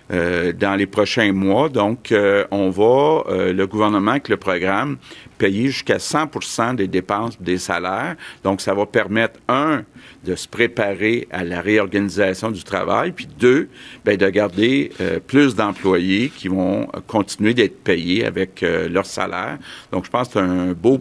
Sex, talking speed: male, 170 wpm